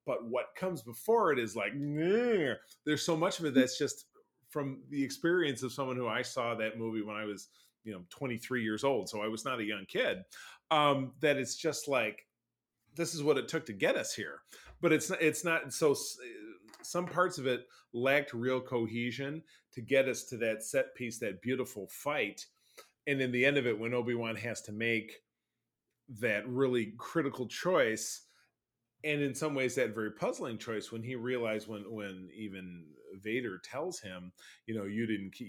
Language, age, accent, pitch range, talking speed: English, 30-49, American, 110-145 Hz, 190 wpm